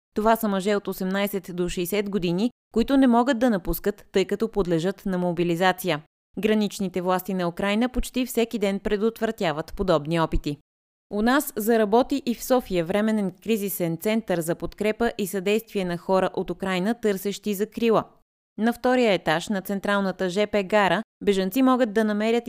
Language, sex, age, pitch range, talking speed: Bulgarian, female, 20-39, 180-225 Hz, 155 wpm